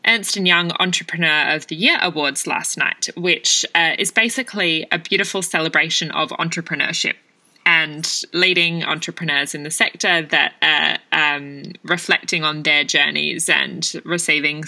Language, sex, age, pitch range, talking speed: English, female, 20-39, 155-190 Hz, 135 wpm